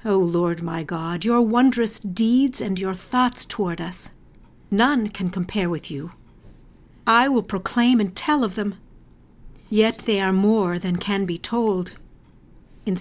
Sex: female